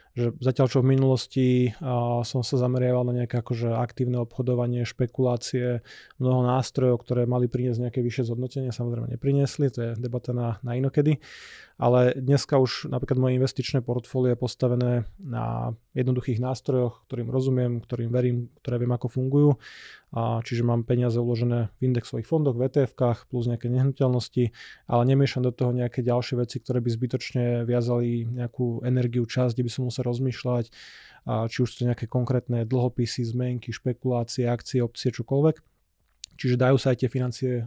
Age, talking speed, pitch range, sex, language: 20-39, 160 wpm, 120-130 Hz, male, Slovak